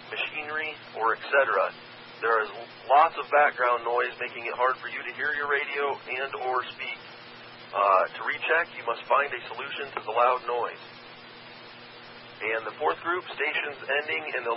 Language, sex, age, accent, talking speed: English, male, 40-59, American, 170 wpm